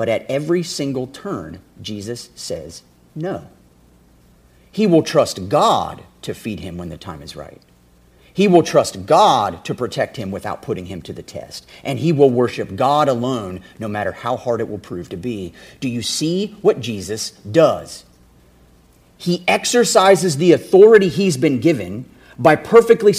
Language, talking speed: English, 165 wpm